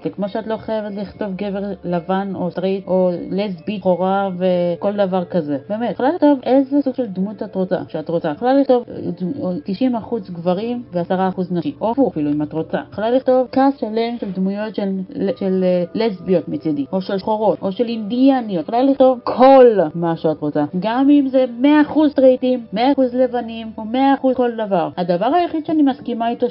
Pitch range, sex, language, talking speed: 190-250 Hz, female, Hebrew, 165 wpm